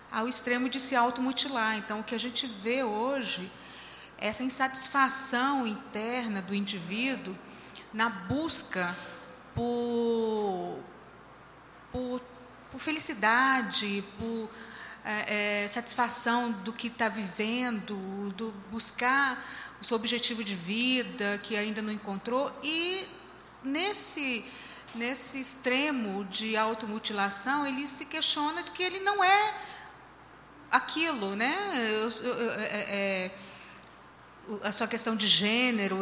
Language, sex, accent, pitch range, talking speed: Portuguese, female, Brazilian, 215-265 Hz, 105 wpm